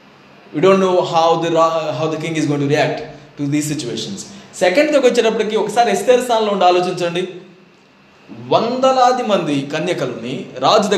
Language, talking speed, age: Telugu, 200 wpm, 20-39